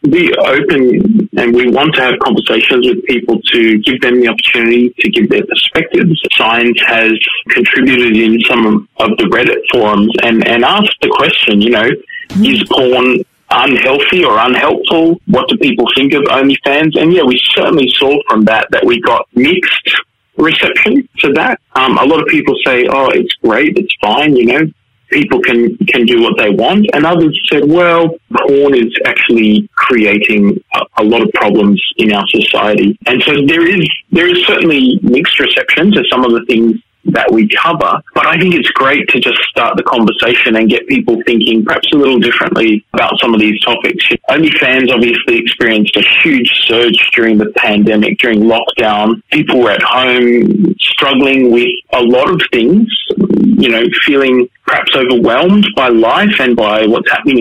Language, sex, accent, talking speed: English, male, Australian, 175 wpm